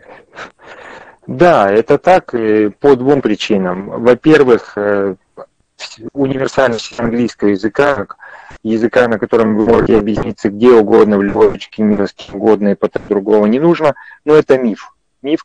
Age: 30-49